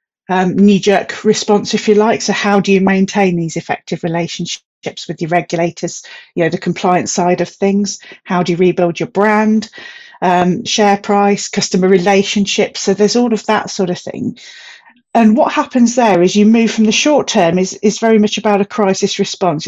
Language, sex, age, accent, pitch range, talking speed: English, female, 40-59, British, 180-210 Hz, 190 wpm